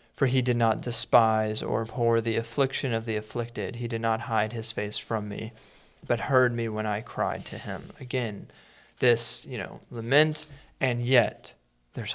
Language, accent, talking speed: English, American, 180 wpm